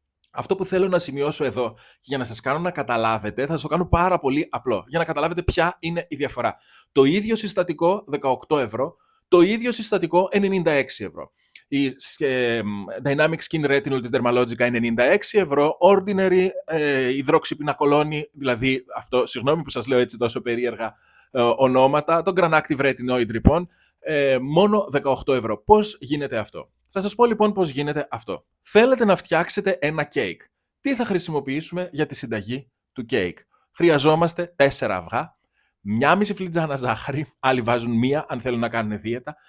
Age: 20-39